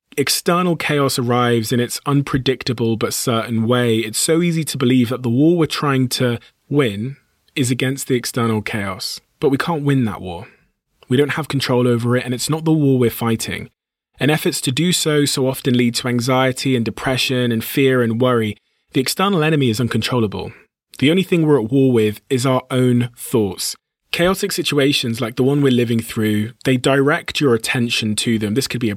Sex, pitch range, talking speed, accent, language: male, 115-140 Hz, 195 wpm, British, English